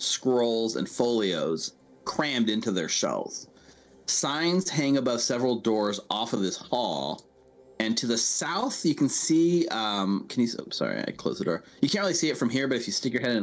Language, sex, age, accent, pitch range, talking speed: English, male, 30-49, American, 105-135 Hz, 200 wpm